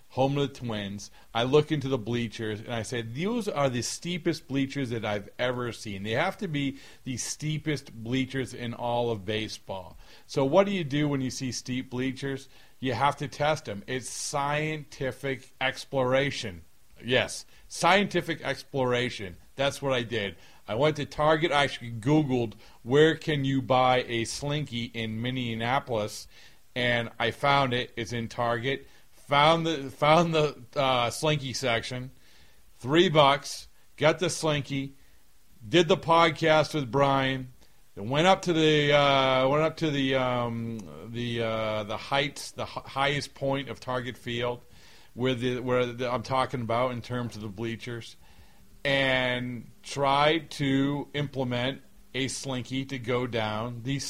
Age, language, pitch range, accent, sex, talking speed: 40-59, English, 120-145 Hz, American, male, 150 wpm